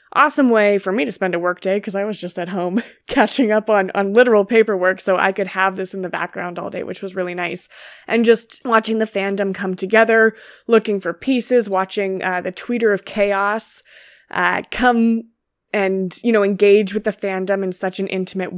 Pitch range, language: 185-230 Hz, English